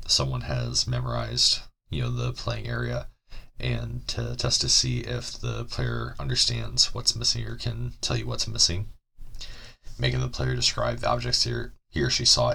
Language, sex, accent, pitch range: English, male, American, 80-120 Hz